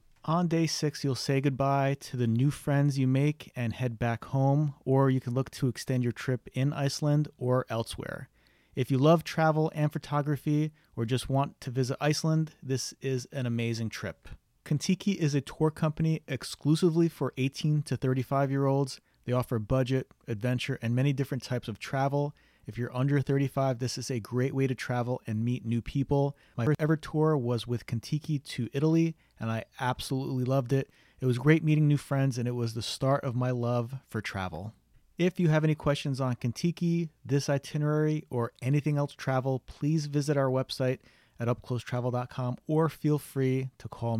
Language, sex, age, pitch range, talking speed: English, male, 30-49, 125-150 Hz, 185 wpm